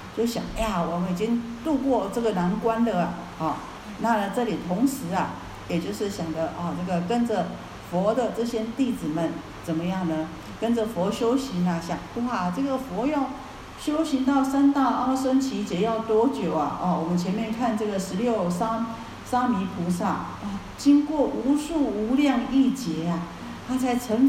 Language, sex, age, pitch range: Chinese, female, 50-69, 180-250 Hz